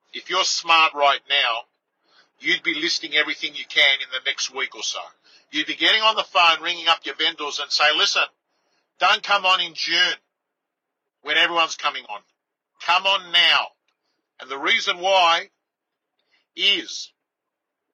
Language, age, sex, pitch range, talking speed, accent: English, 50-69, male, 170-220 Hz, 155 wpm, Australian